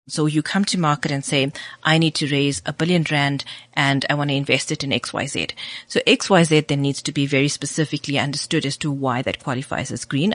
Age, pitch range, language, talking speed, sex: 30-49, 140-160 Hz, English, 220 wpm, female